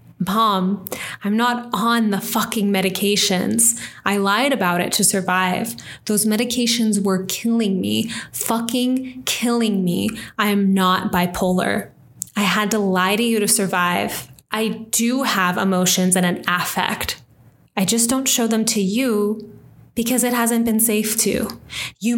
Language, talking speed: English, 145 wpm